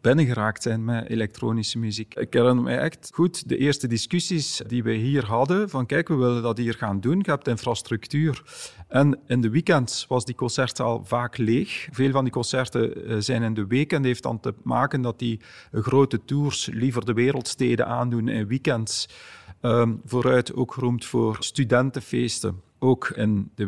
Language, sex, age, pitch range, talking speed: Dutch, male, 40-59, 120-150 Hz, 175 wpm